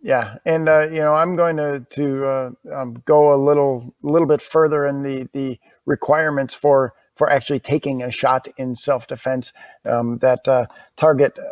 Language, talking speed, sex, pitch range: English, 175 wpm, male, 135-155 Hz